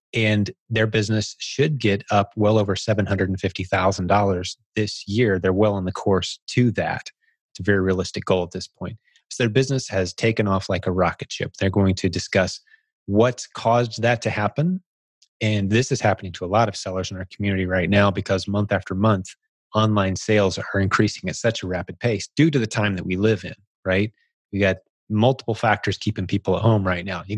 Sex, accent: male, American